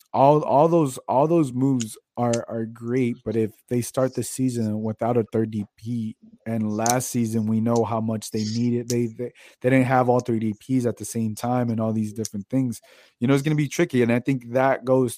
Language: English